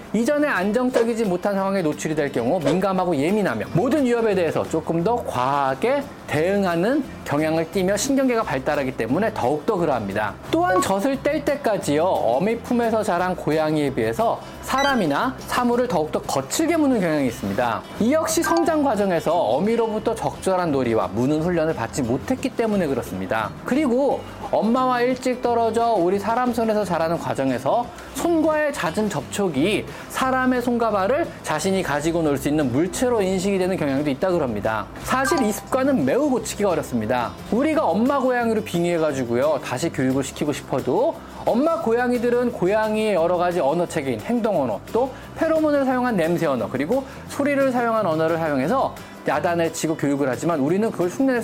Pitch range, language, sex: 160-255 Hz, Korean, male